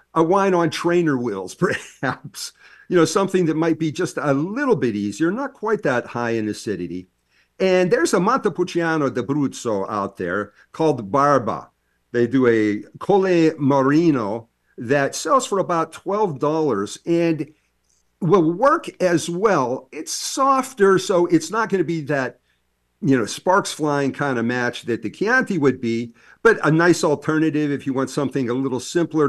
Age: 50-69